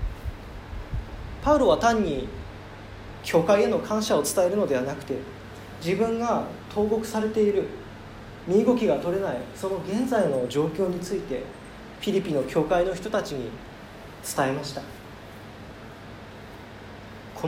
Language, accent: Japanese, native